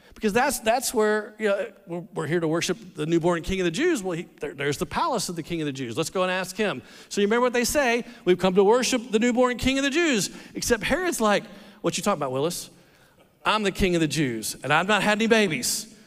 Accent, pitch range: American, 175-250 Hz